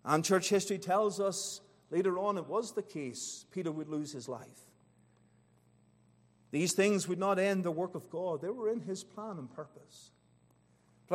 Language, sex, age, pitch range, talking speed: English, male, 50-69, 185-235 Hz, 180 wpm